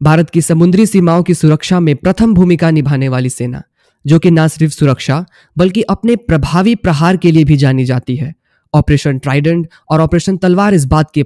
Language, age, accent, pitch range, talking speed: Hindi, 20-39, native, 145-185 Hz, 185 wpm